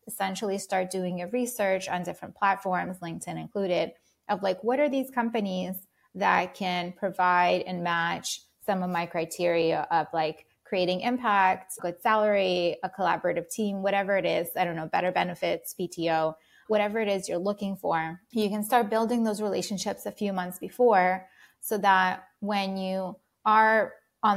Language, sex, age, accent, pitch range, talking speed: English, female, 20-39, American, 180-215 Hz, 160 wpm